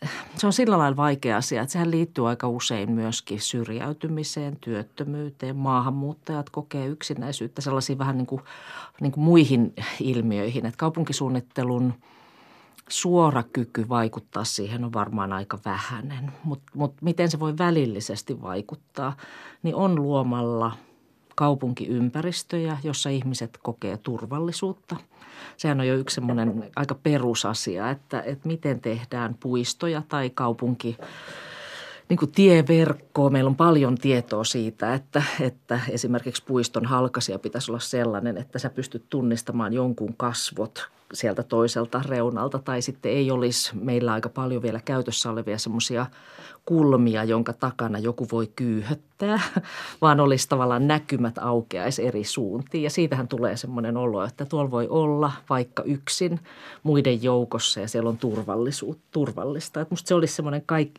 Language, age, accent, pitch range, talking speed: Finnish, 40-59, native, 120-150 Hz, 135 wpm